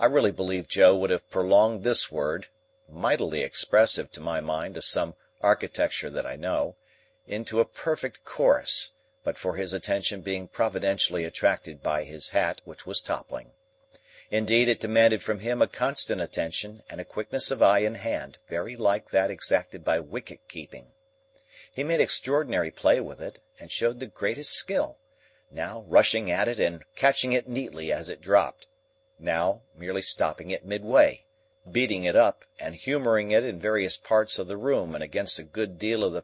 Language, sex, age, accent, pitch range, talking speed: English, male, 50-69, American, 95-135 Hz, 170 wpm